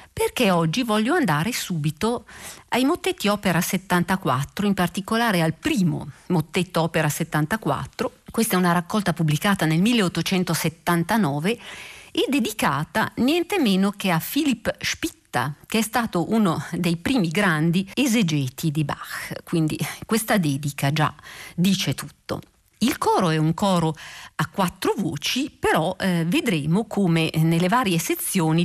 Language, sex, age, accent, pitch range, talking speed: Italian, female, 50-69, native, 160-210 Hz, 130 wpm